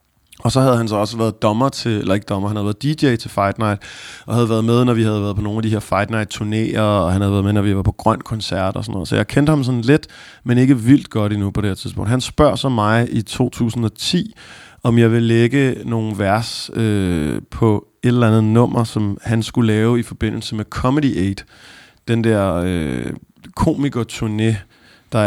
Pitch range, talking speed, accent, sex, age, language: 105-130 Hz, 235 wpm, native, male, 30-49, Danish